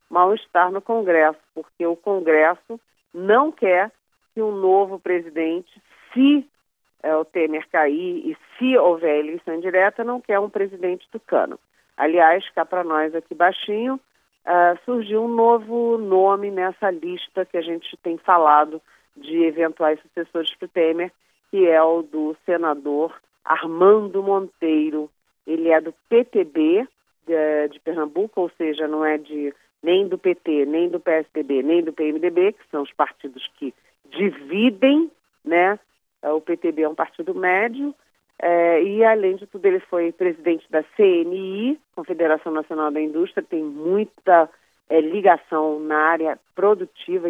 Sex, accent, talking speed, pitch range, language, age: female, Brazilian, 140 wpm, 160-215 Hz, Portuguese, 40-59